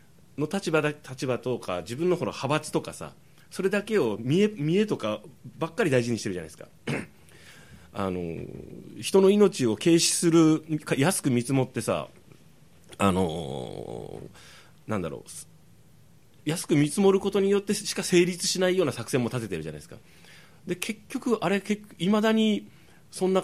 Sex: male